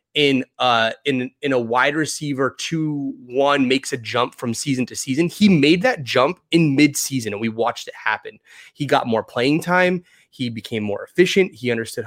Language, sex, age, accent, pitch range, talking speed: English, male, 30-49, American, 115-155 Hz, 190 wpm